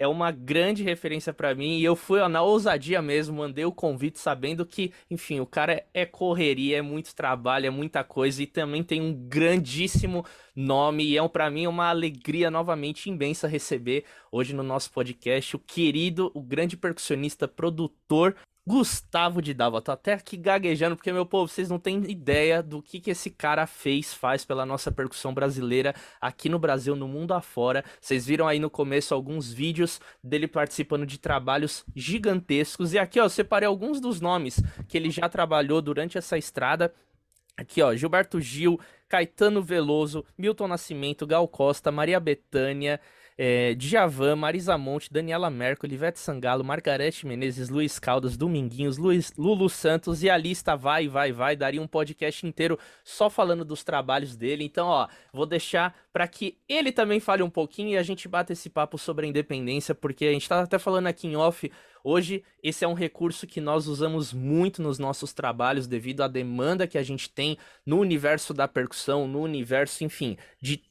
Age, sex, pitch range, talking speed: 20-39, male, 140-175 Hz, 180 wpm